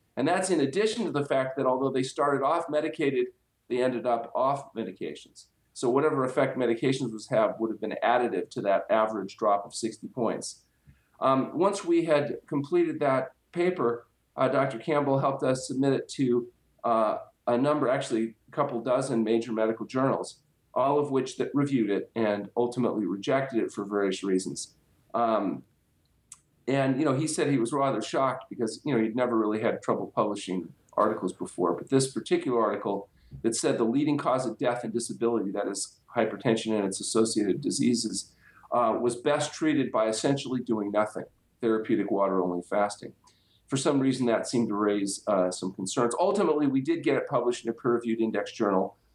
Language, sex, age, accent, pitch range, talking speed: English, male, 40-59, American, 110-135 Hz, 175 wpm